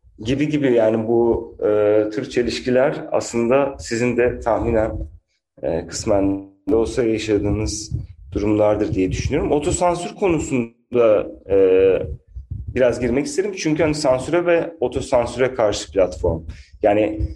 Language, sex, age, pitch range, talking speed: Turkish, male, 40-59, 105-145 Hz, 115 wpm